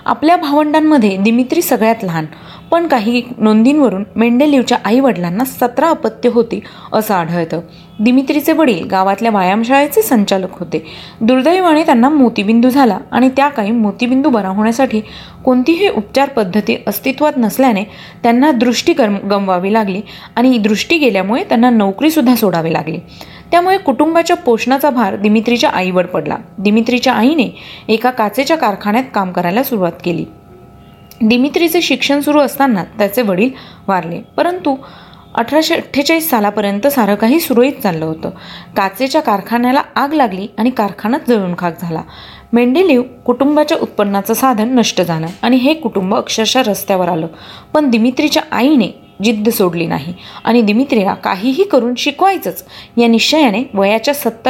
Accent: native